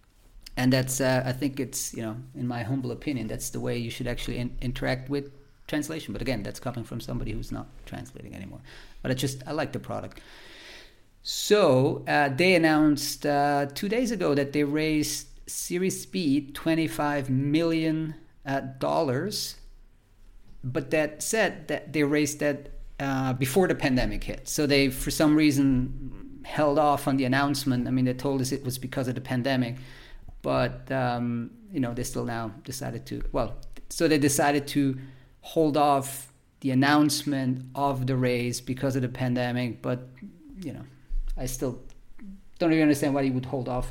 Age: 40-59